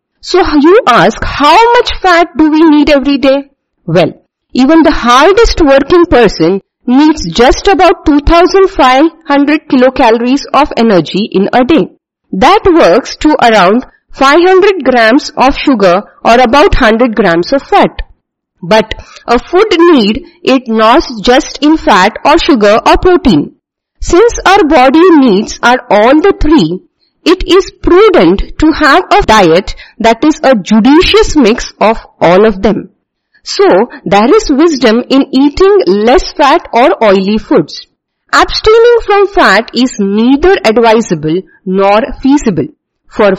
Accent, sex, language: Indian, female, English